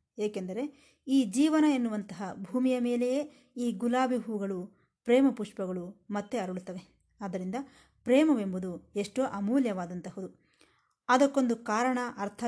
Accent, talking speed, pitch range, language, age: native, 95 wpm, 190-255 Hz, Kannada, 20-39